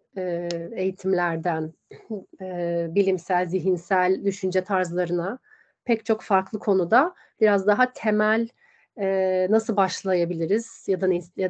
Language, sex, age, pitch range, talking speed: Turkish, female, 30-49, 180-210 Hz, 100 wpm